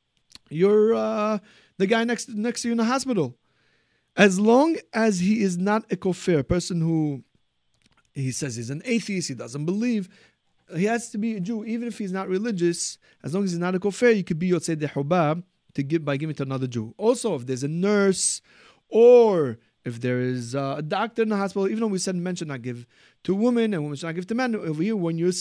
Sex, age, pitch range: male, 30-49, 145-210 Hz